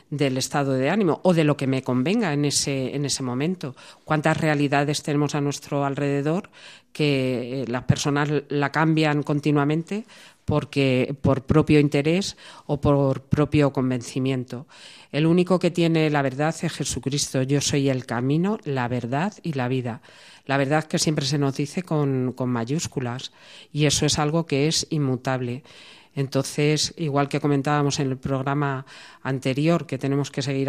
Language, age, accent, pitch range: Spanish, 40-59, Spanish, 135-155 Hz